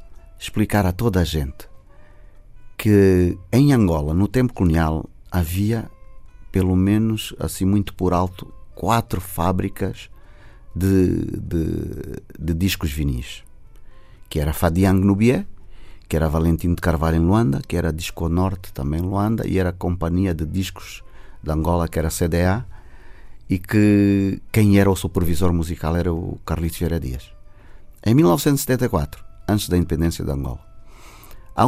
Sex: male